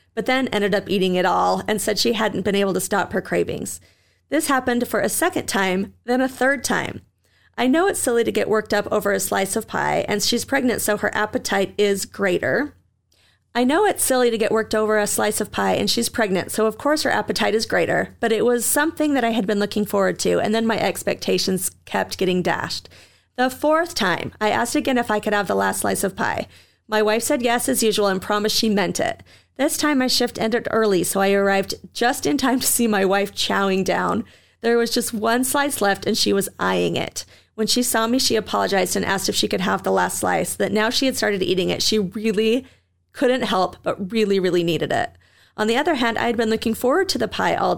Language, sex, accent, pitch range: English, female, American, 195-245 Hz